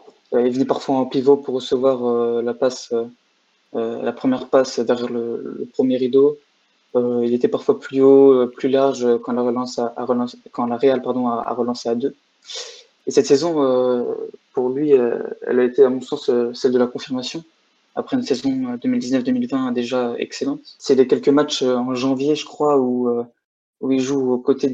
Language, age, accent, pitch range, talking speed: French, 20-39, French, 120-140 Hz, 195 wpm